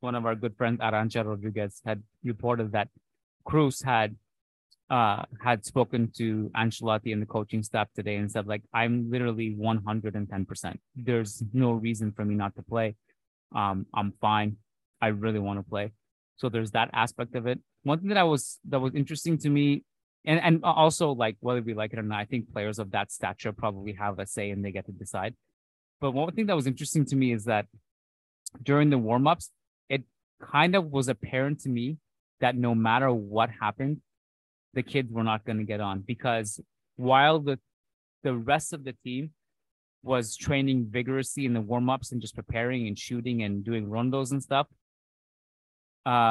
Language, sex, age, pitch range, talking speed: English, male, 20-39, 105-130 Hz, 185 wpm